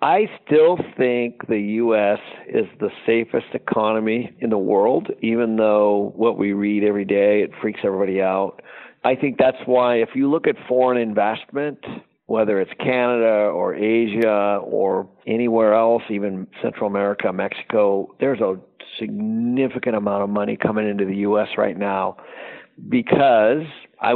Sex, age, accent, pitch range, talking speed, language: male, 50-69, American, 100-120 Hz, 145 wpm, English